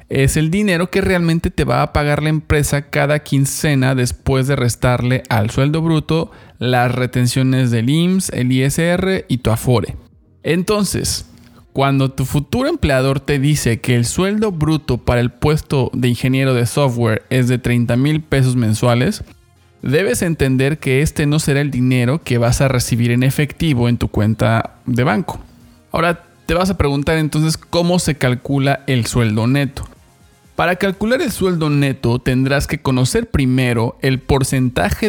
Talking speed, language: 160 wpm, Spanish